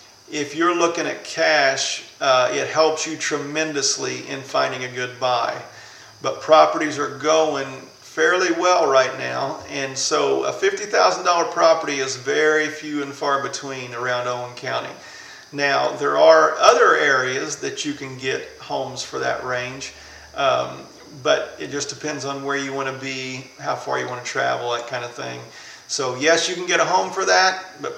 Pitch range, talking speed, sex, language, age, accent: 135-175 Hz, 170 wpm, male, English, 40-59, American